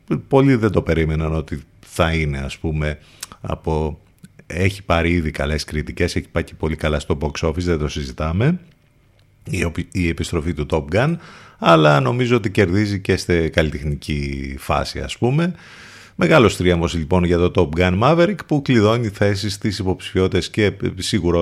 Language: Greek